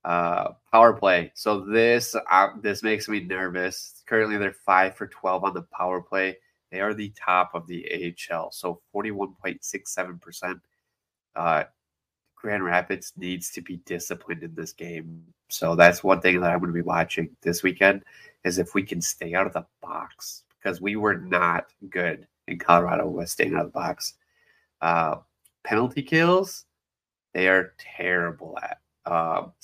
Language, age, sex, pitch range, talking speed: English, 20-39, male, 85-110 Hz, 170 wpm